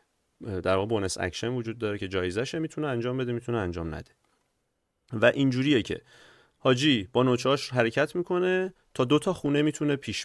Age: 30-49